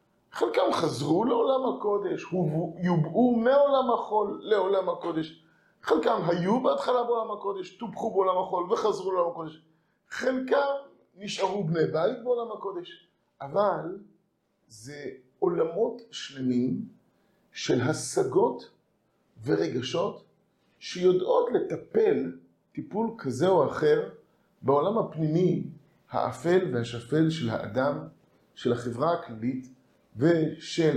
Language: Hebrew